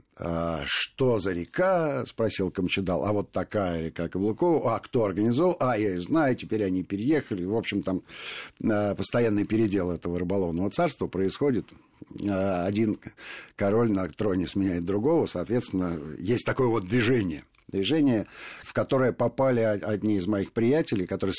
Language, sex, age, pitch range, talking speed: Russian, male, 50-69, 90-115 Hz, 135 wpm